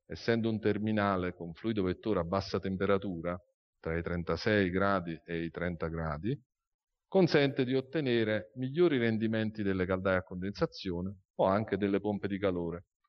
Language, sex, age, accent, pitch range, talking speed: Italian, male, 40-59, native, 90-120 Hz, 145 wpm